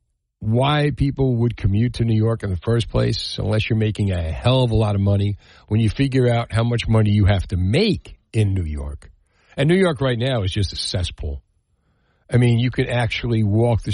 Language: English